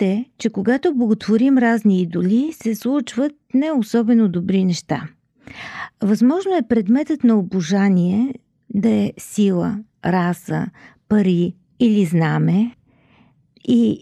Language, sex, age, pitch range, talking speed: Bulgarian, female, 50-69, 200-250 Hz, 105 wpm